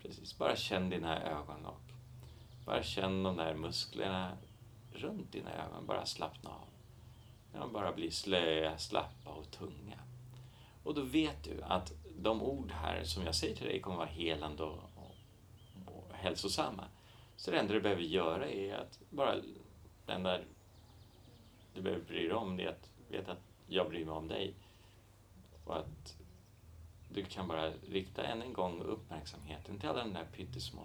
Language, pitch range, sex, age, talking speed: Swedish, 80-110 Hz, male, 40-59, 165 wpm